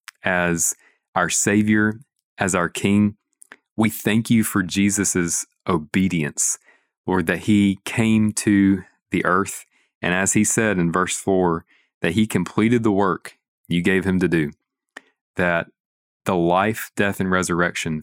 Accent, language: American, English